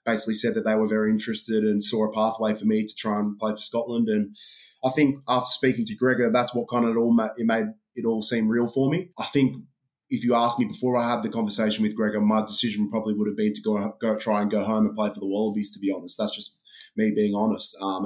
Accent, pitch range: Australian, 105-115 Hz